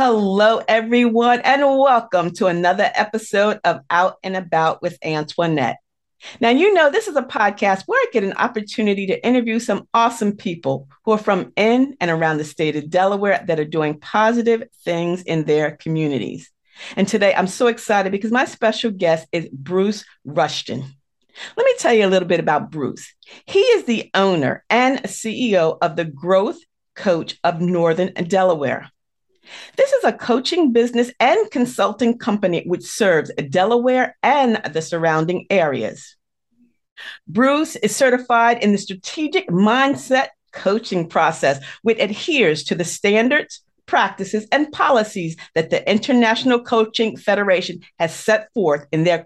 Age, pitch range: 40-59, 170-235 Hz